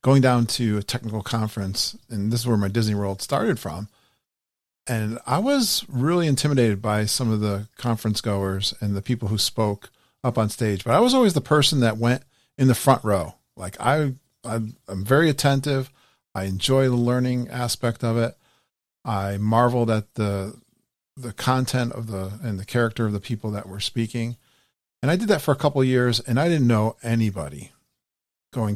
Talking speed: 190 wpm